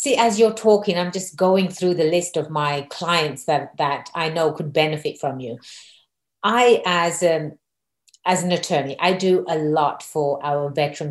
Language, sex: English, female